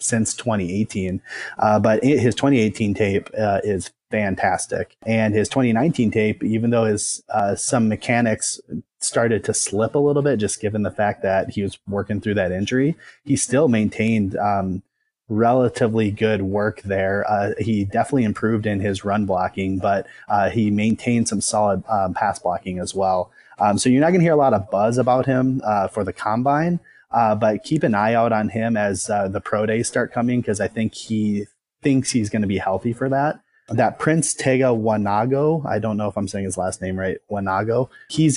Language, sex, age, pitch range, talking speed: English, male, 30-49, 100-120 Hz, 195 wpm